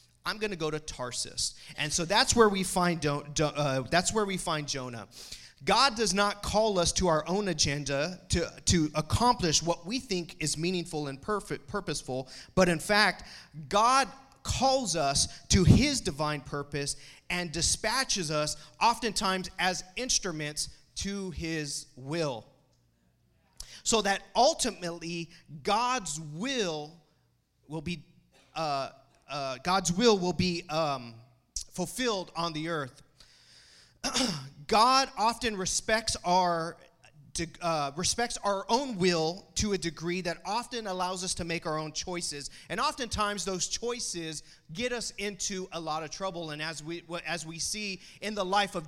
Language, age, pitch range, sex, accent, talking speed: English, 30-49, 155-205 Hz, male, American, 145 wpm